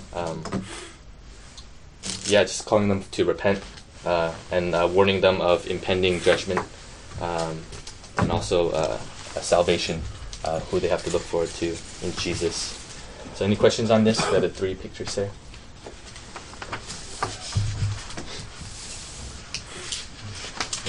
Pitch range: 85-105 Hz